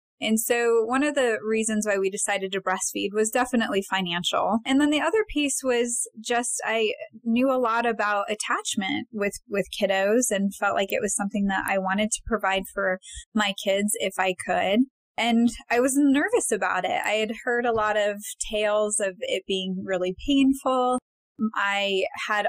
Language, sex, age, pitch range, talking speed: English, female, 20-39, 195-245 Hz, 180 wpm